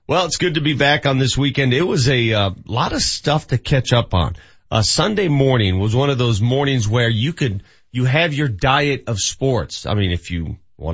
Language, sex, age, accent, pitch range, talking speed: English, male, 40-59, American, 105-135 Hz, 235 wpm